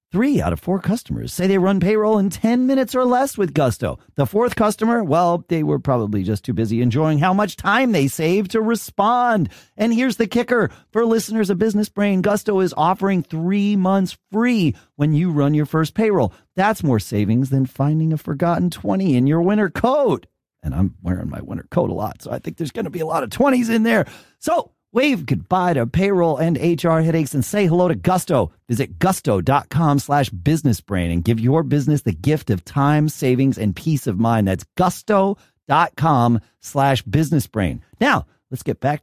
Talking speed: 195 wpm